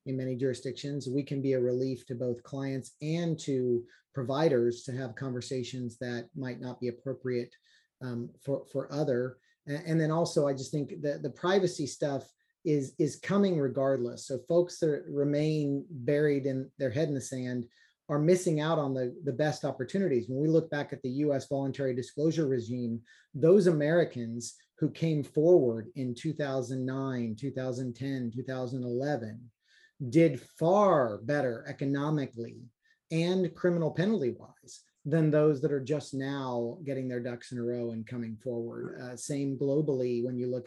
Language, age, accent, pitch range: English, 30-49, American, 125-150 Hz